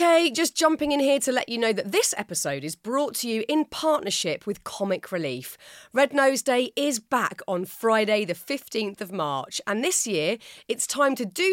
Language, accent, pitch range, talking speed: English, British, 170-260 Hz, 205 wpm